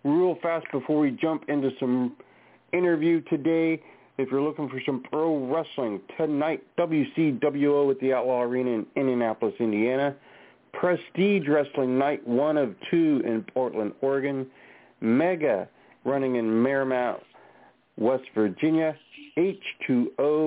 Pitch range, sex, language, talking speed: 125-155 Hz, male, English, 120 wpm